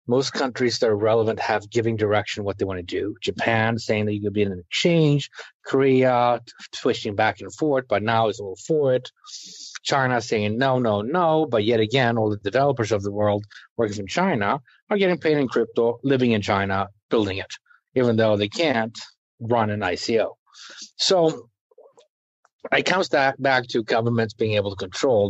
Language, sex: English, male